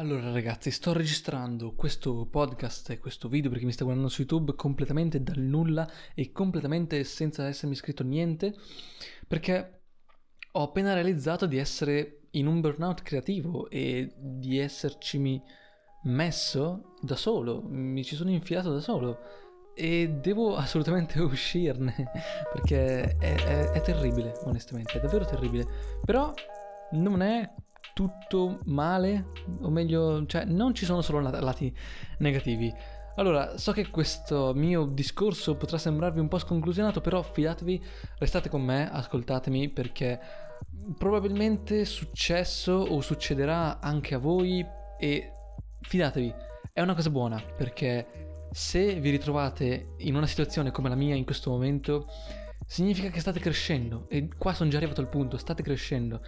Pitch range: 130-180 Hz